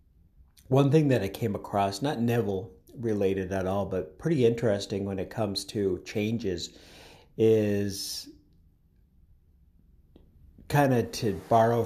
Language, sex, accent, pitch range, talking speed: English, male, American, 90-115 Hz, 120 wpm